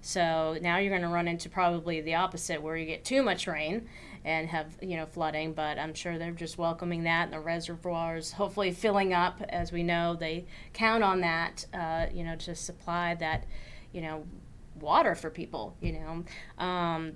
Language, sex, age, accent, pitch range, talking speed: English, female, 30-49, American, 165-205 Hz, 185 wpm